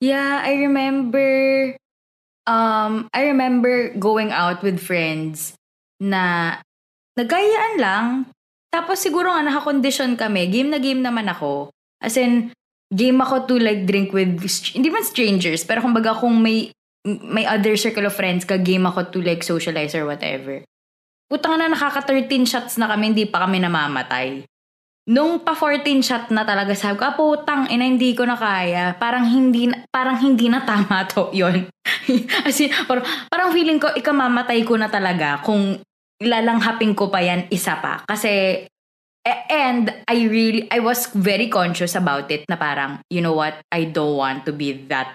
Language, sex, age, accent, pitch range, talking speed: English, female, 20-39, Filipino, 170-255 Hz, 160 wpm